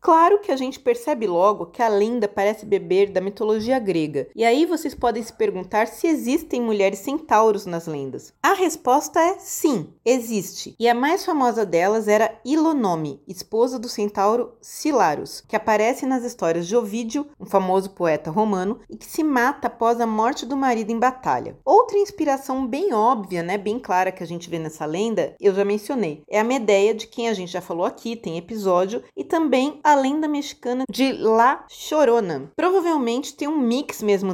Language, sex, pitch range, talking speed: Portuguese, female, 200-275 Hz, 180 wpm